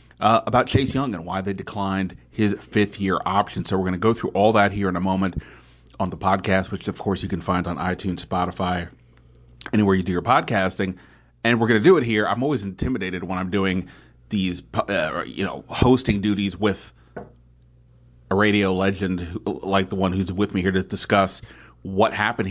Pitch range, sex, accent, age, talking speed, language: 90-110 Hz, male, American, 30-49, 200 wpm, English